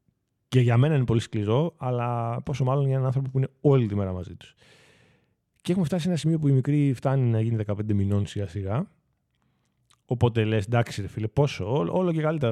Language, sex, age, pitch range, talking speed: Greek, male, 20-39, 105-135 Hz, 200 wpm